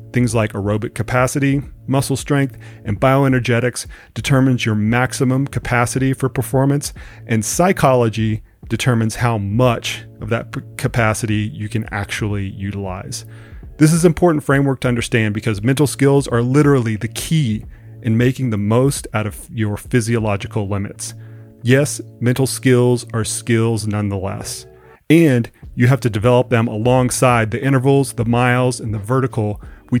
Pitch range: 110-130 Hz